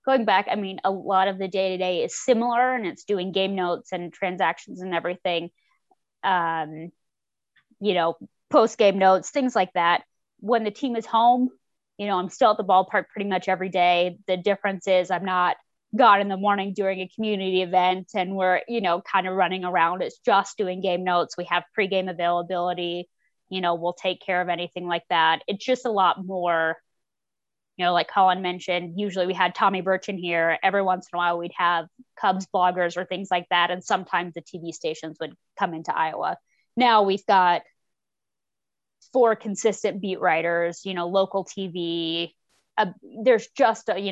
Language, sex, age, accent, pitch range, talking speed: English, female, 20-39, American, 175-210 Hz, 190 wpm